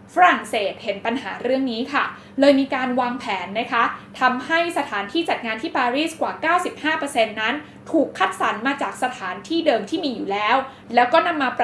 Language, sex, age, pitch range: Thai, female, 20-39, 230-305 Hz